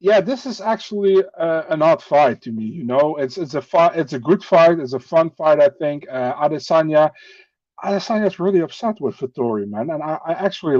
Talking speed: 210 wpm